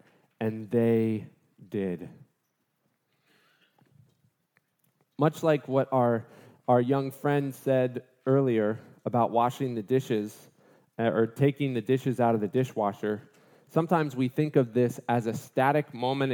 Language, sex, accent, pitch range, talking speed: English, male, American, 125-155 Hz, 120 wpm